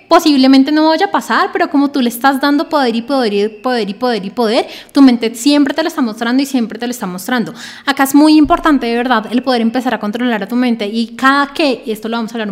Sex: female